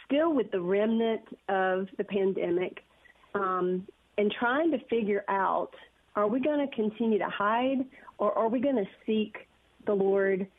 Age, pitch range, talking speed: 40-59, 195-235 Hz, 160 wpm